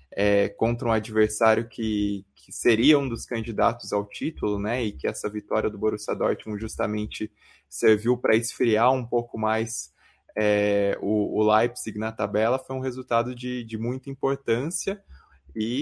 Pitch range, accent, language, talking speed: 105-115 Hz, Brazilian, Portuguese, 155 wpm